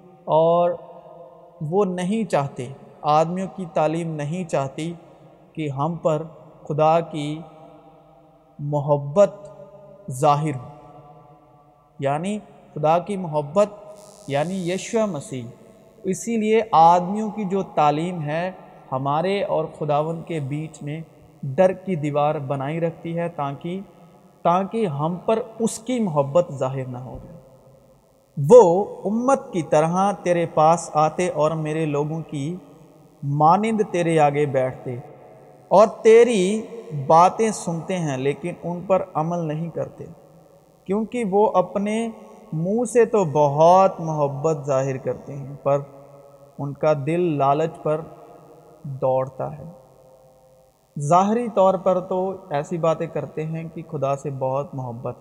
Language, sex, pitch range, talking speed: Urdu, male, 145-185 Hz, 120 wpm